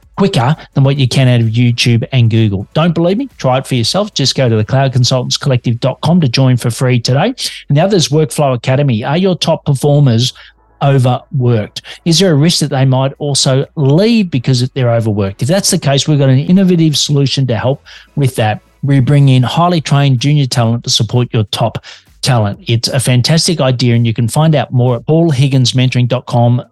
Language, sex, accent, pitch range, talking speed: English, male, Australian, 120-145 Hz, 195 wpm